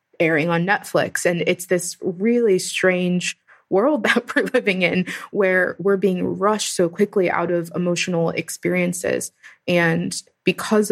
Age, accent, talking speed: 20-39, American, 135 wpm